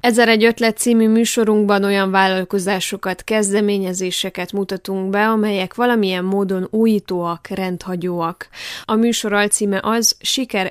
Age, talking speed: 20-39, 110 wpm